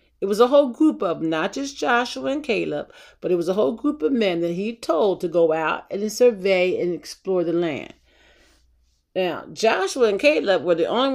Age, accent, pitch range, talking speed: 50-69, American, 170-265 Hz, 205 wpm